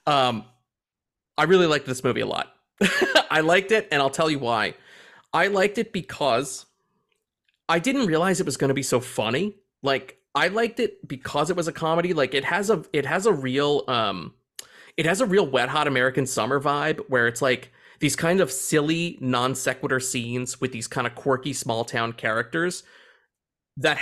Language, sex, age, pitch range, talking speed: English, male, 30-49, 130-195 Hz, 185 wpm